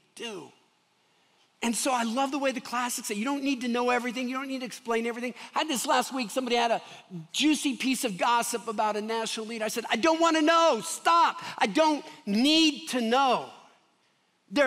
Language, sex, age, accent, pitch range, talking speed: English, male, 50-69, American, 200-290 Hz, 210 wpm